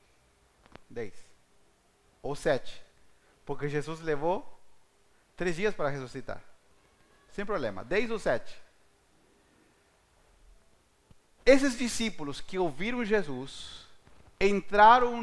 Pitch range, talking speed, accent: 135-195 Hz, 85 wpm, Brazilian